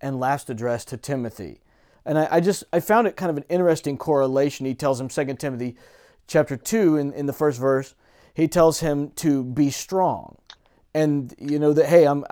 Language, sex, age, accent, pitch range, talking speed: English, male, 40-59, American, 140-170 Hz, 200 wpm